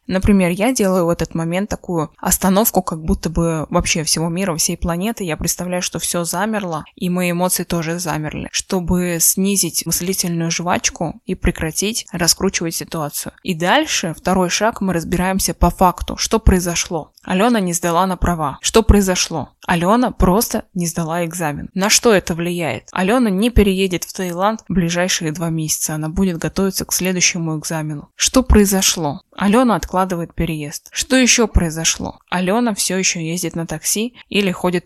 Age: 20-39